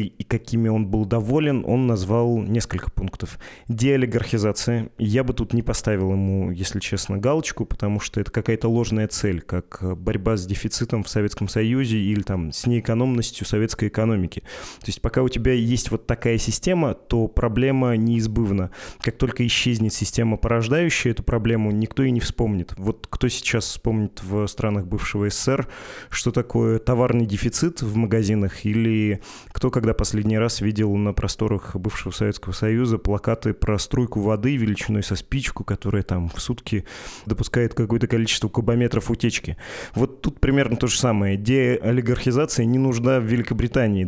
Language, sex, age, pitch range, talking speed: Russian, male, 20-39, 105-120 Hz, 155 wpm